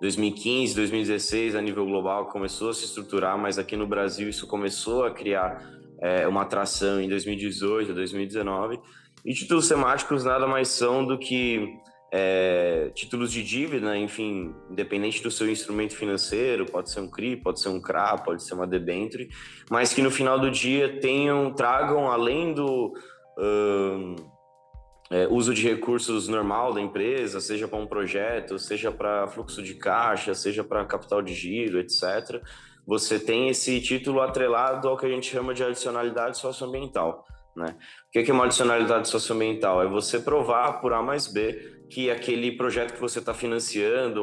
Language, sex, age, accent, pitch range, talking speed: Portuguese, male, 20-39, Brazilian, 100-125 Hz, 160 wpm